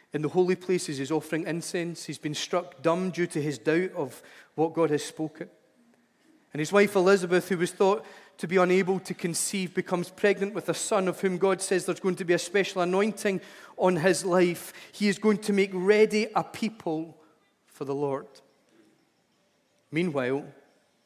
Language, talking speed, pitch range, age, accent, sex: English, 180 wpm, 155-195 Hz, 40-59, British, male